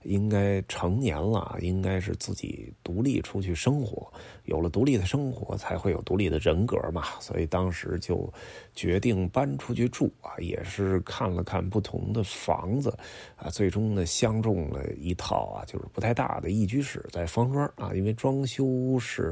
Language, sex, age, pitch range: Chinese, male, 30-49, 90-115 Hz